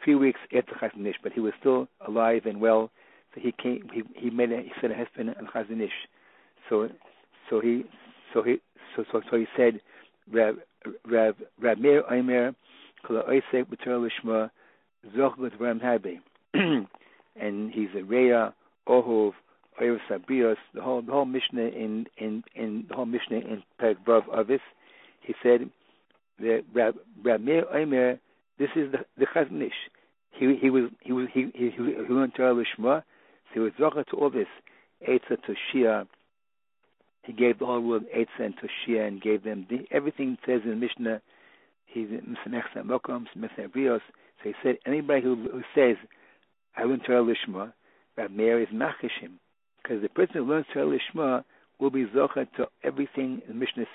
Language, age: English, 60-79